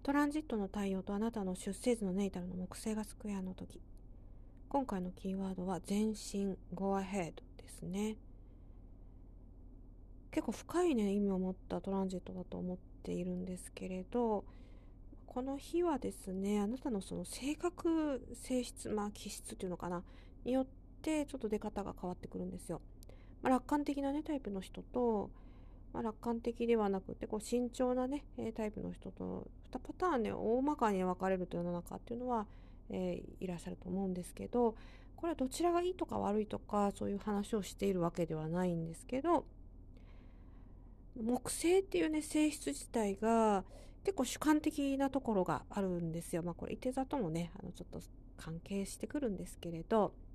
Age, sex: 40-59, female